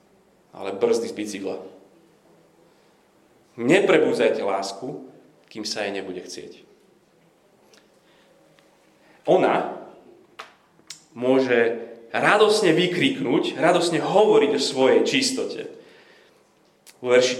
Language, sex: Slovak, male